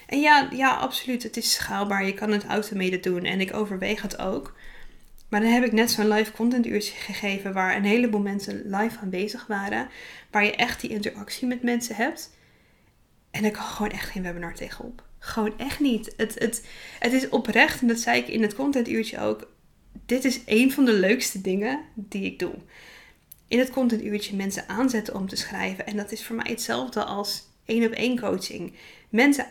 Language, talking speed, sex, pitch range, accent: Dutch, 195 wpm, female, 200-240 Hz, Dutch